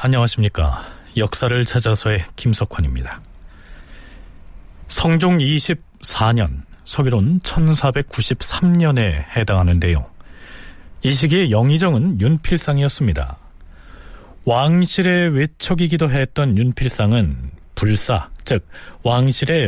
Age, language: 40-59, Korean